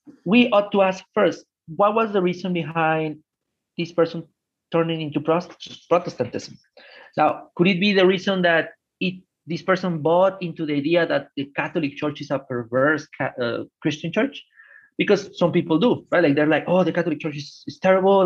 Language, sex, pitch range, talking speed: English, male, 145-185 Hz, 180 wpm